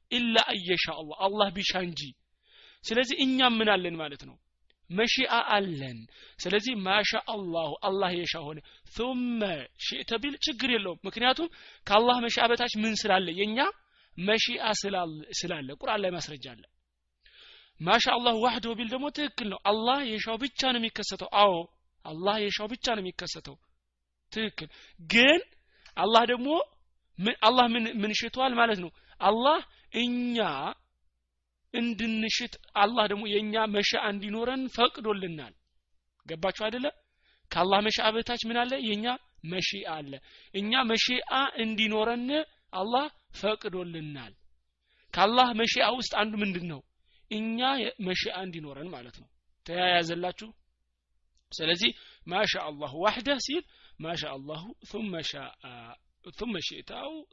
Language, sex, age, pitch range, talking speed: Amharic, male, 30-49, 170-240 Hz, 90 wpm